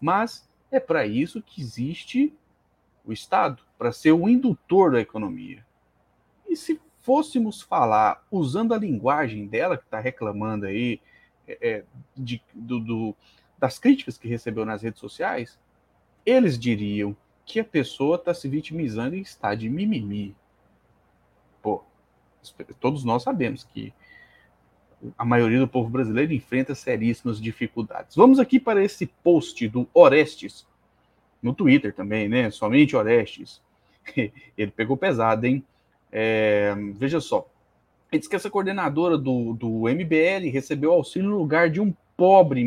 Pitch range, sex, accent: 115-190 Hz, male, Brazilian